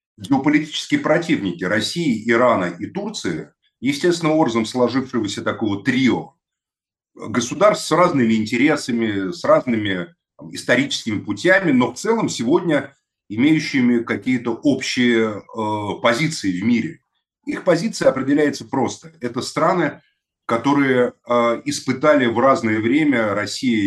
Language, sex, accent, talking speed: Russian, male, native, 110 wpm